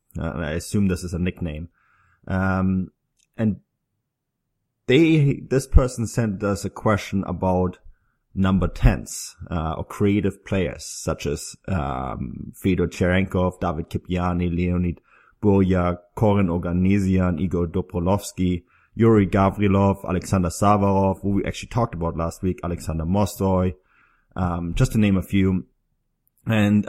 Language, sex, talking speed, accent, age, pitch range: English, male, 125 wpm, German, 30-49, 90-105 Hz